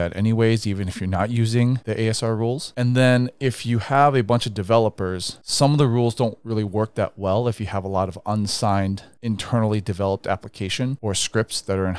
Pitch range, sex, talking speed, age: 100-120 Hz, male, 215 wpm, 30-49